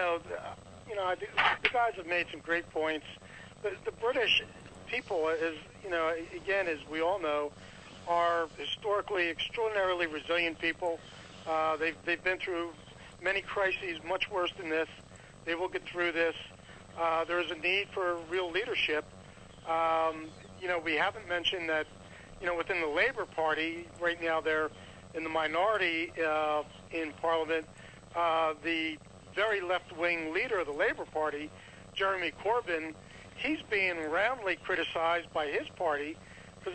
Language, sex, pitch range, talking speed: English, male, 160-185 Hz, 150 wpm